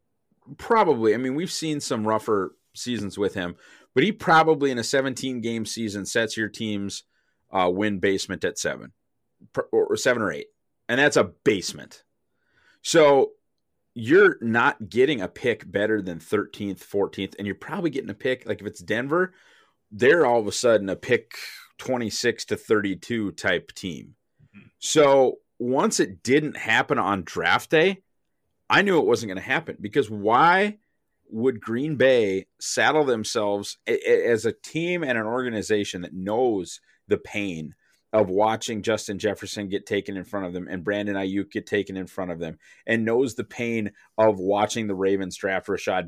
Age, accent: 30-49, American